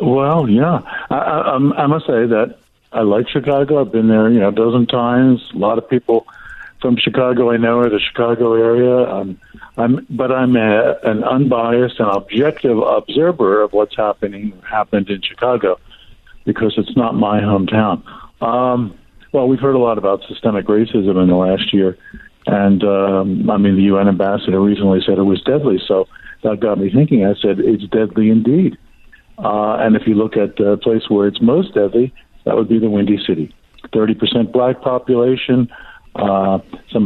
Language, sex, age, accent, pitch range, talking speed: English, male, 60-79, American, 105-130 Hz, 180 wpm